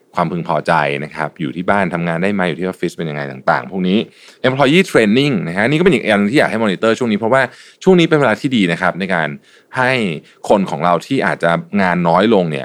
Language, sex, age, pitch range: Thai, male, 20-39, 80-110 Hz